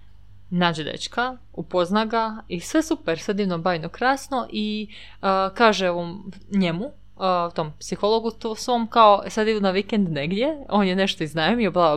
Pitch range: 165-210 Hz